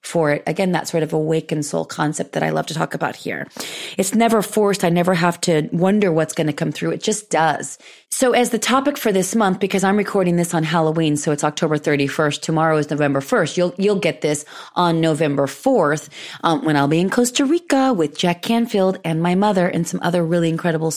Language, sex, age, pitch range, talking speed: English, female, 30-49, 155-195 Hz, 225 wpm